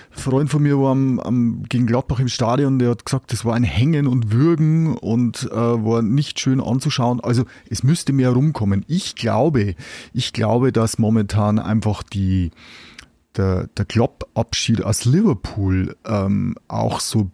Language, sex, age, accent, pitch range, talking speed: German, male, 30-49, German, 105-130 Hz, 160 wpm